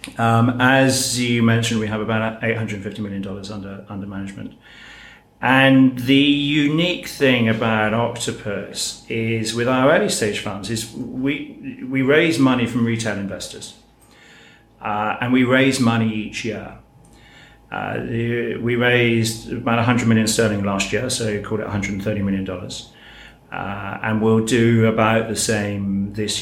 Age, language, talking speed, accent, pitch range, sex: 40-59, English, 145 wpm, British, 100-120 Hz, male